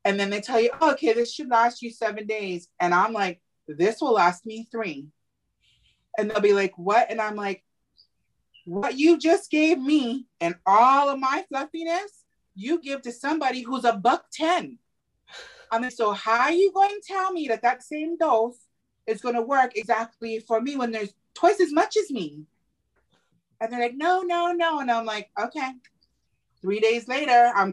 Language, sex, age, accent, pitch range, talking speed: English, female, 30-49, American, 220-320 Hz, 195 wpm